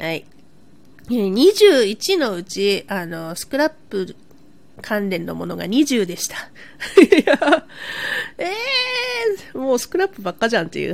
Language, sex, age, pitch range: Japanese, female, 40-59, 210-300 Hz